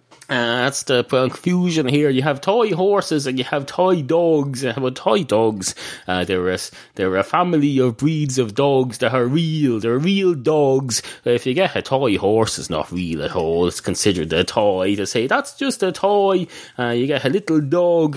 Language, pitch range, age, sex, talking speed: English, 110-155 Hz, 30-49, male, 205 wpm